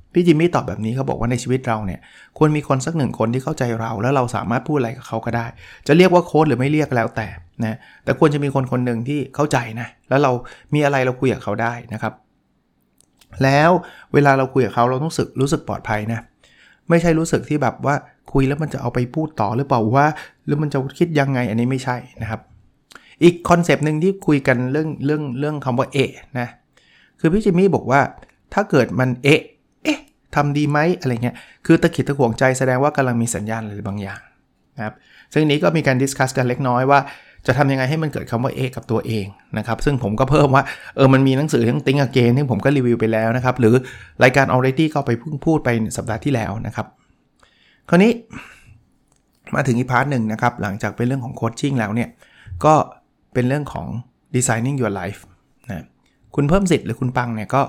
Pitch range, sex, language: 115-145 Hz, male, Thai